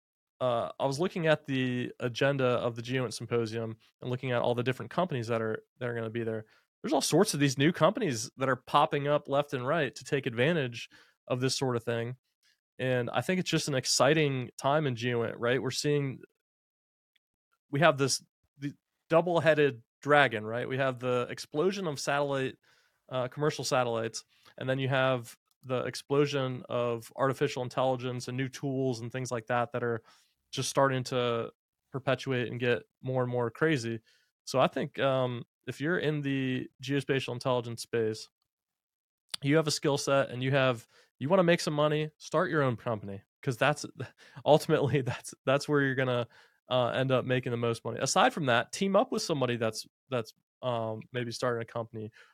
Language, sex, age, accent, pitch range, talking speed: English, male, 20-39, American, 120-145 Hz, 185 wpm